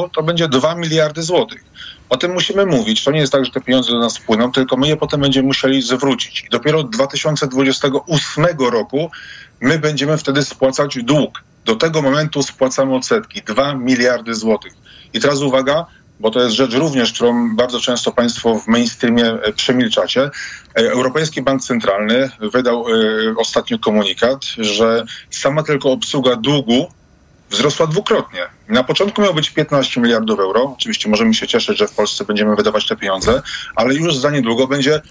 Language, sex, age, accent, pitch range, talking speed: Polish, male, 30-49, native, 120-145 Hz, 160 wpm